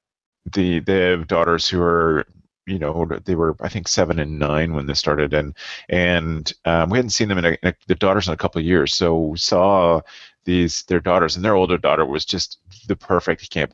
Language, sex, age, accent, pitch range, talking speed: English, male, 30-49, American, 80-95 Hz, 220 wpm